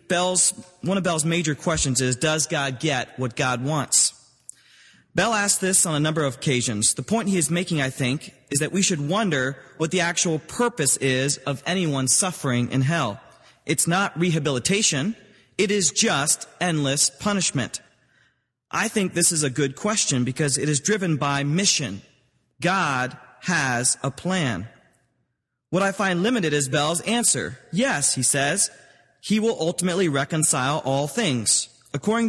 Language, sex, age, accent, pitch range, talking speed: English, male, 30-49, American, 140-185 Hz, 160 wpm